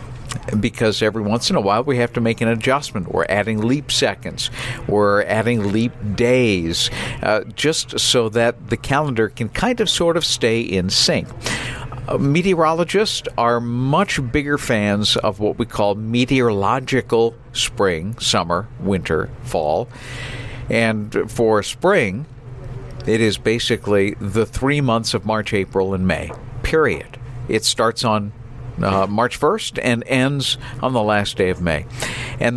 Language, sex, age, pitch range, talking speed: English, male, 50-69, 110-130 Hz, 145 wpm